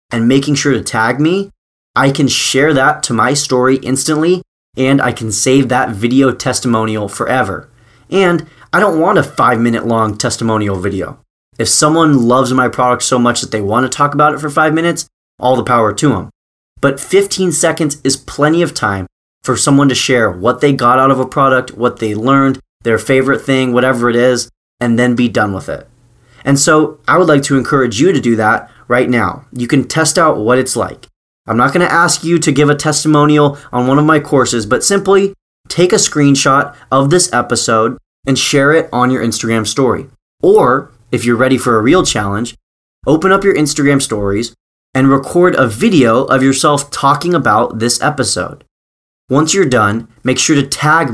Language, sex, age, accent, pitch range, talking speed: English, male, 20-39, American, 115-145 Hz, 195 wpm